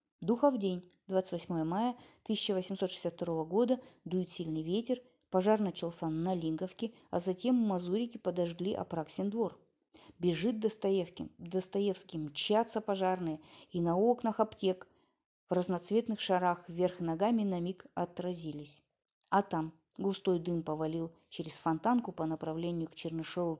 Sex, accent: female, native